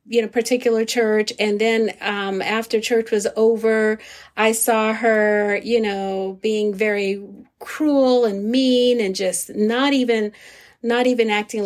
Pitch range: 205-230 Hz